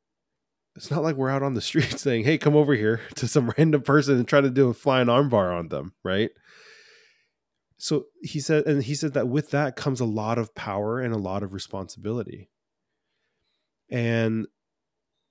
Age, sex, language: 20-39, male, English